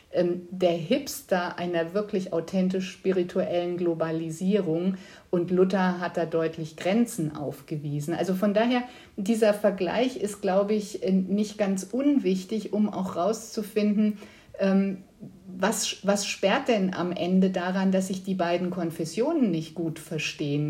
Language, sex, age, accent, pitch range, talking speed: German, female, 50-69, German, 175-205 Hz, 125 wpm